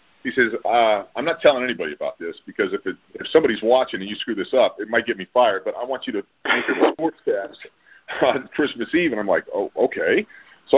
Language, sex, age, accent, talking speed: English, male, 40-59, American, 235 wpm